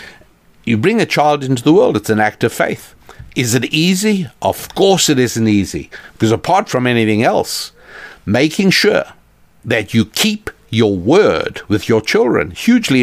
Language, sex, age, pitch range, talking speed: English, male, 60-79, 110-150 Hz, 165 wpm